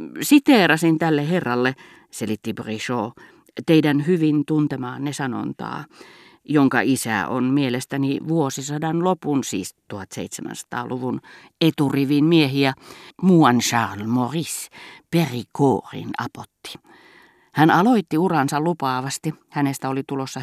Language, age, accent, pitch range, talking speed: Finnish, 50-69, native, 125-160 Hz, 90 wpm